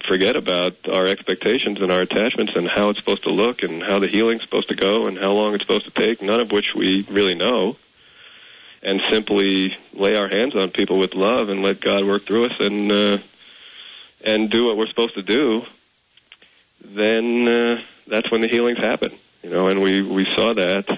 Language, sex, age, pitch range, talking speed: English, male, 40-59, 90-105 Hz, 205 wpm